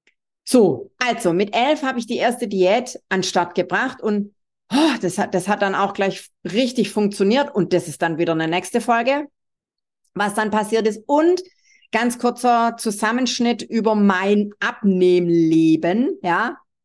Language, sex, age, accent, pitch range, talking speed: German, female, 50-69, German, 205-275 Hz, 150 wpm